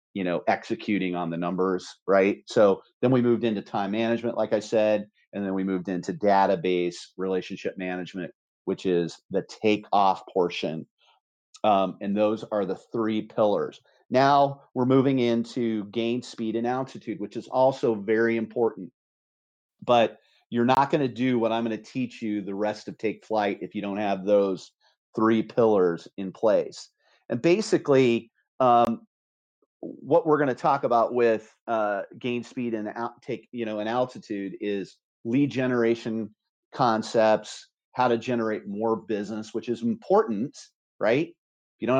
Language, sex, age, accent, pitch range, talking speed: English, male, 40-59, American, 105-125 Hz, 160 wpm